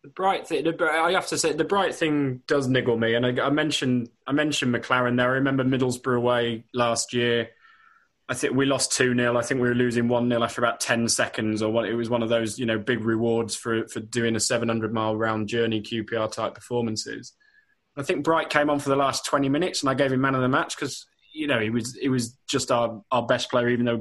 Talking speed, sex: 250 wpm, male